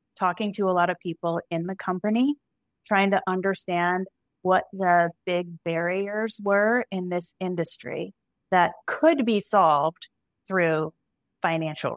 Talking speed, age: 130 wpm, 20-39